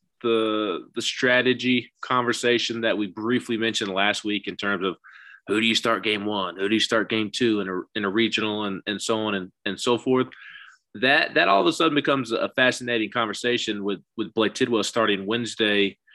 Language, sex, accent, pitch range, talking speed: English, male, American, 100-120 Hz, 200 wpm